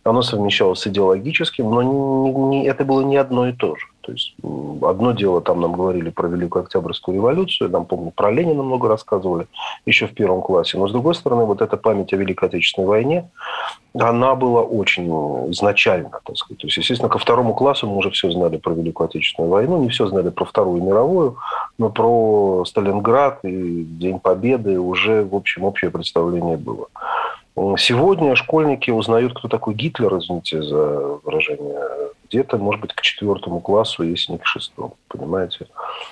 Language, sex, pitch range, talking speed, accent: Russian, male, 95-140 Hz, 165 wpm, native